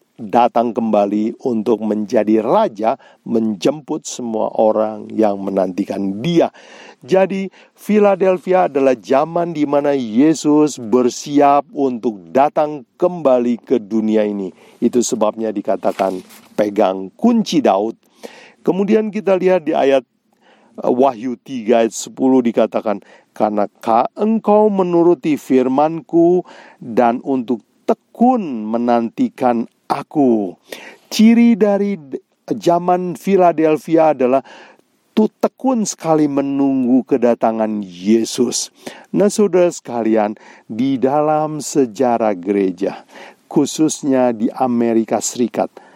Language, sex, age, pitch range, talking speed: Indonesian, male, 50-69, 115-175 Hz, 90 wpm